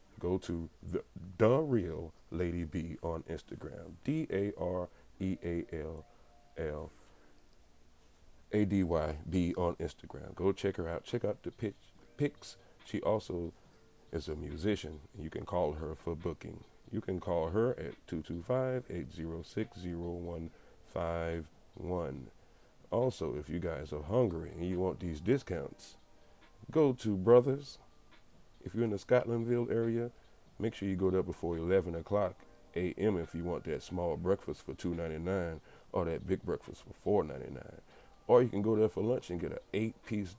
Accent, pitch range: American, 85-105 Hz